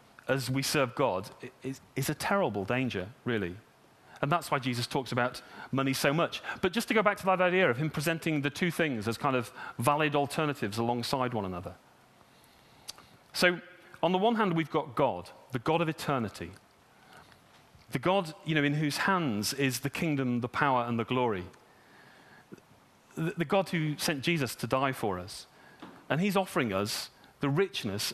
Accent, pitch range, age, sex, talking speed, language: British, 125-180 Hz, 40-59, male, 175 wpm, English